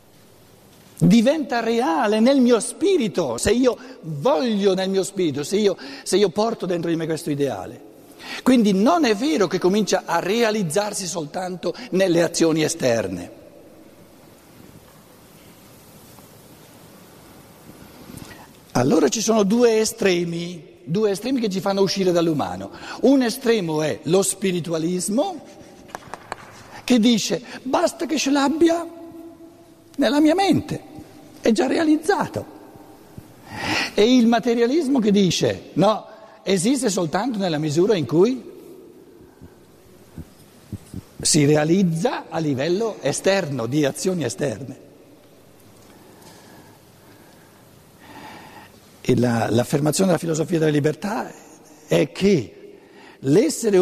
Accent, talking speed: native, 105 wpm